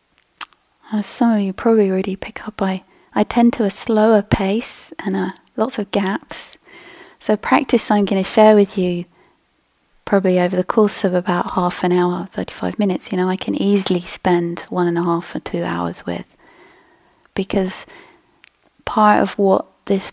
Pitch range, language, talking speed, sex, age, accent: 180-220 Hz, English, 175 wpm, female, 30-49, British